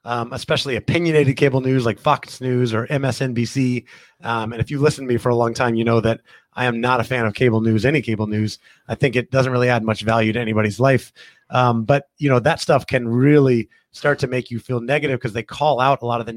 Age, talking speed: 30-49, 250 wpm